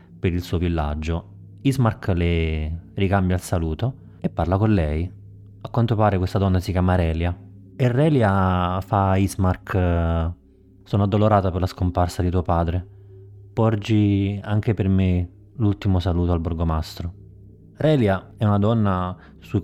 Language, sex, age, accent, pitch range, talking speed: Italian, male, 30-49, native, 85-110 Hz, 145 wpm